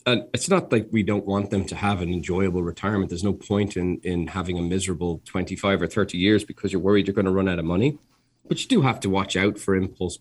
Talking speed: 260 wpm